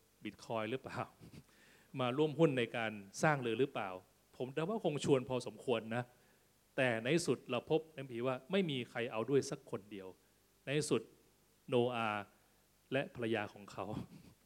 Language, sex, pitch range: Thai, male, 115-145 Hz